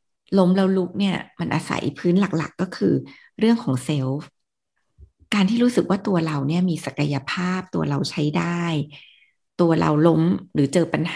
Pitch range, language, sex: 160-200 Hz, Thai, female